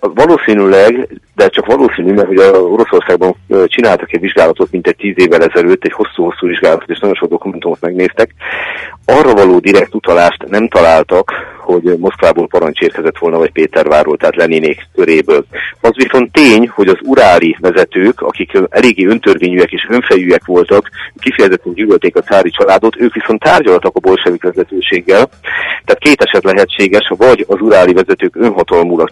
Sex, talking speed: male, 150 wpm